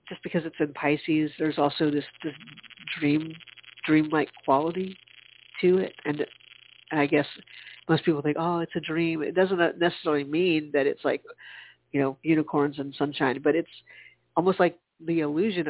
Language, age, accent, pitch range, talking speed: English, 50-69, American, 140-170 Hz, 160 wpm